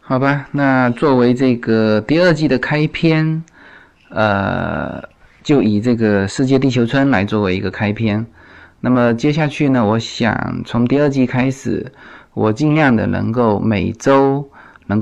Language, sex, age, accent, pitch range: Chinese, male, 20-39, native, 105-135 Hz